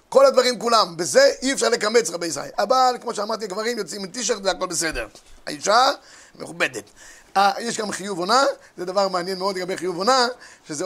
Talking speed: 180 wpm